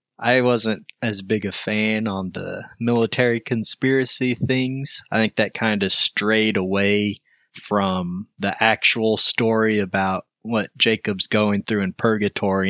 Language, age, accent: English, 20-39, American